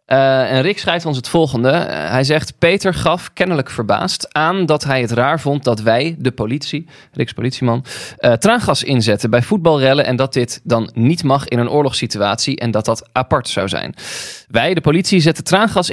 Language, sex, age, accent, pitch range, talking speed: Dutch, male, 20-39, Dutch, 115-145 Hz, 190 wpm